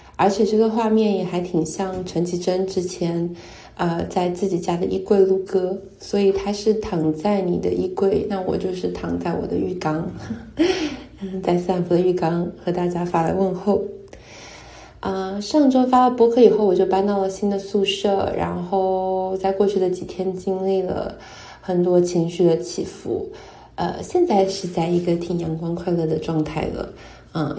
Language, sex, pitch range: Chinese, female, 175-195 Hz